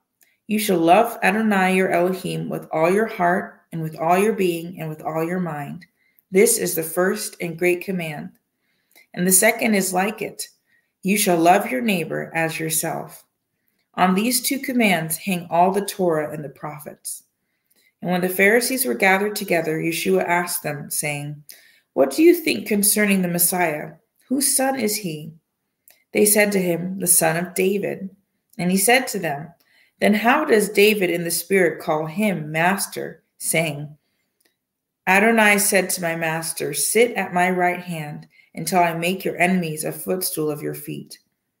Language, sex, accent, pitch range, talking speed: English, female, American, 165-205 Hz, 170 wpm